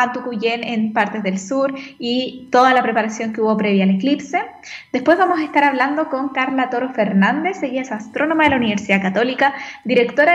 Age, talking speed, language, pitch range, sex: 10-29, 180 wpm, Spanish, 235-300 Hz, female